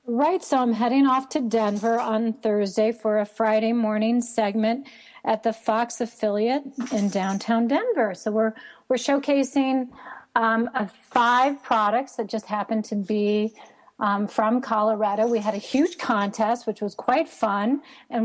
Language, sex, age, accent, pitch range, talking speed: English, female, 40-59, American, 215-245 Hz, 150 wpm